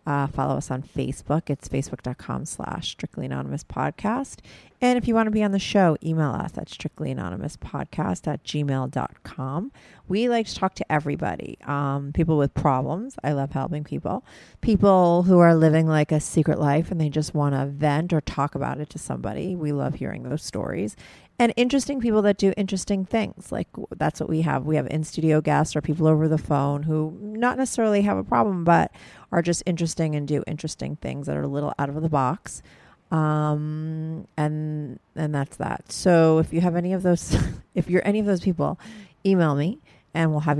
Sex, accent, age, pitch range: female, American, 30-49, 140-170 Hz